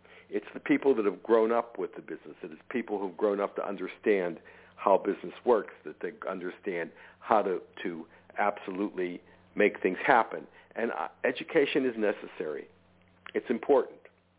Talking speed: 160 wpm